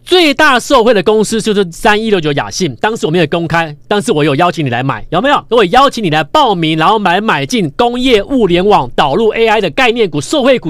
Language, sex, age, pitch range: Chinese, male, 30-49, 165-250 Hz